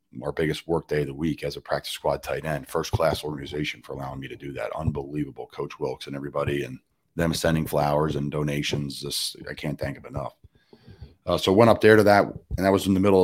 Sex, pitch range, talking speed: male, 75-95 Hz, 235 wpm